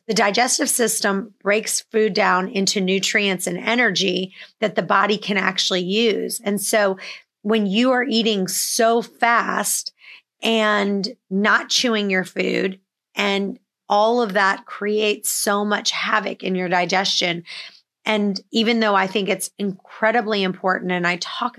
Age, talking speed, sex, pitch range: 30-49, 140 wpm, female, 190-225 Hz